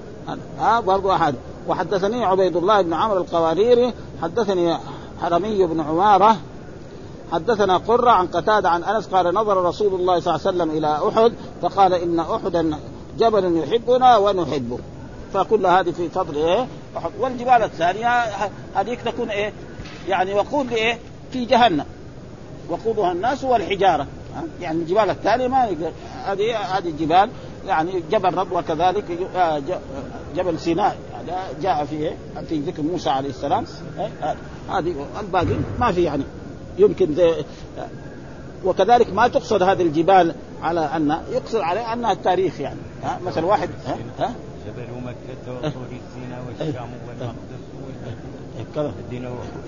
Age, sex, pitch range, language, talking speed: 50-69, male, 150-220 Hz, Arabic, 115 wpm